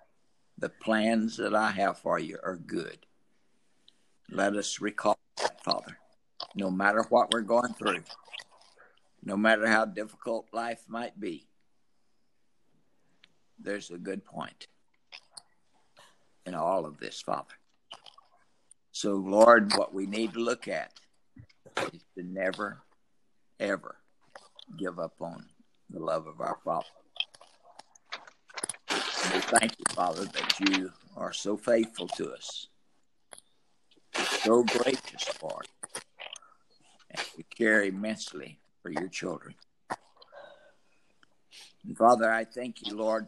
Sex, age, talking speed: male, 60-79, 115 wpm